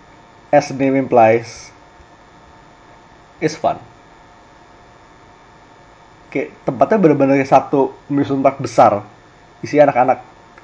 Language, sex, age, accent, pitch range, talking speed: Indonesian, male, 30-49, native, 135-175 Hz, 80 wpm